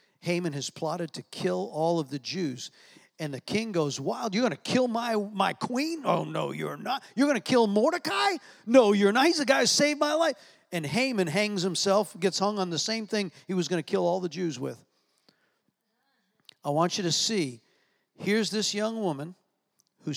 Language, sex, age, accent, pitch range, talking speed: English, male, 50-69, American, 150-210 Hz, 205 wpm